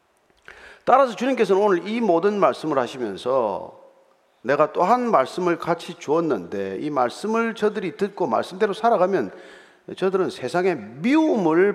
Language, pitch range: Korean, 170-265 Hz